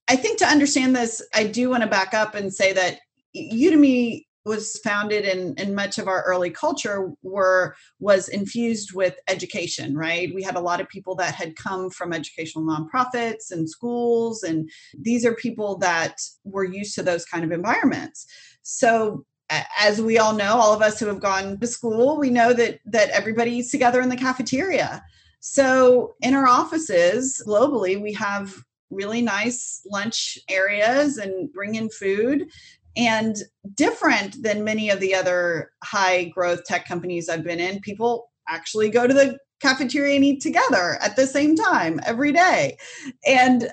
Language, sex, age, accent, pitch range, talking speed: English, female, 30-49, American, 190-260 Hz, 170 wpm